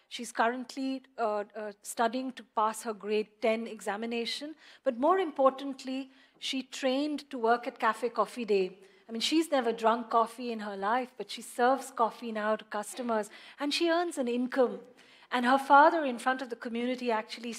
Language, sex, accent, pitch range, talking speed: English, female, Indian, 220-260 Hz, 175 wpm